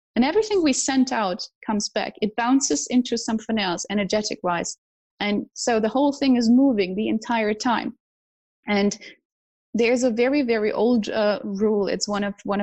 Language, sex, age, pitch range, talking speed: English, female, 20-39, 205-255 Hz, 170 wpm